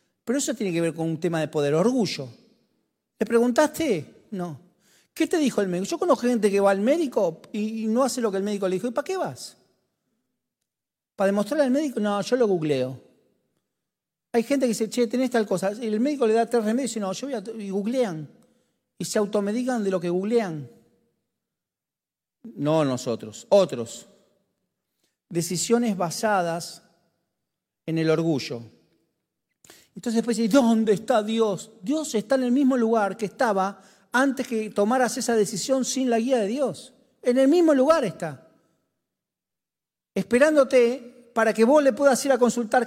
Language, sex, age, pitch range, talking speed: Spanish, male, 40-59, 185-255 Hz, 170 wpm